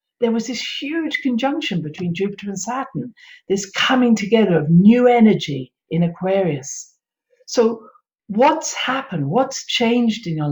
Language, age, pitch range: English, 50-69, 165-235 Hz